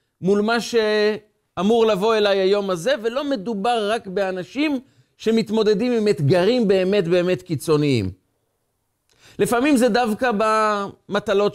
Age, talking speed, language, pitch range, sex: 40-59, 110 wpm, Hebrew, 150-220 Hz, male